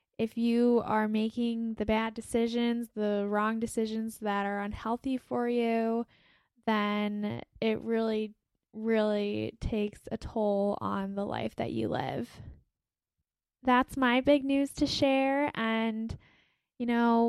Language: English